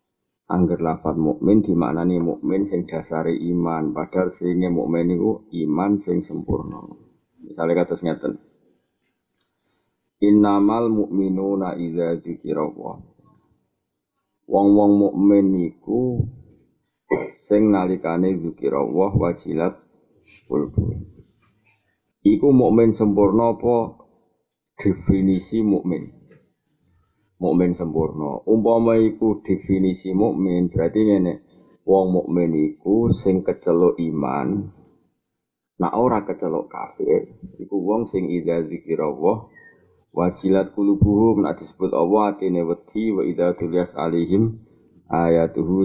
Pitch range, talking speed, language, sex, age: 85-105 Hz, 95 wpm, Malay, male, 50-69